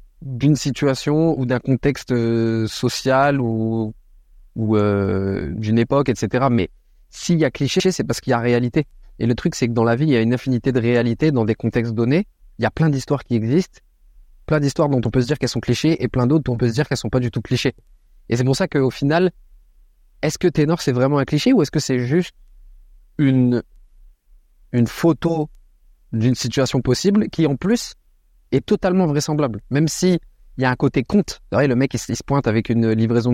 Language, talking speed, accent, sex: French, 215 wpm, French, male